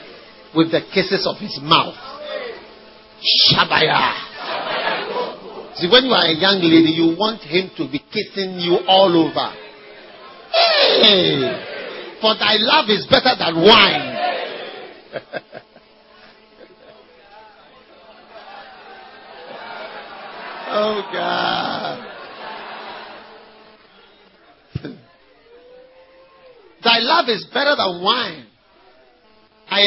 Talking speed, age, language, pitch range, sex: 80 wpm, 50-69, English, 195-290 Hz, male